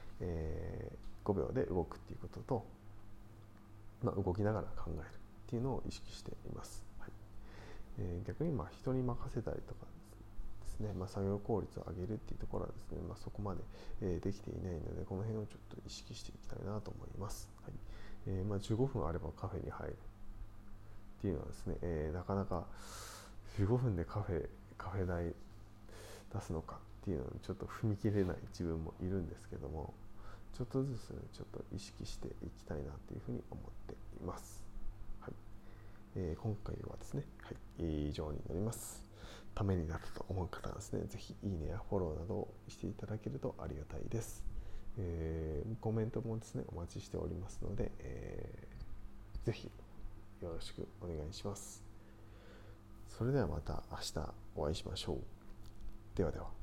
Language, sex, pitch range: Japanese, male, 95-110 Hz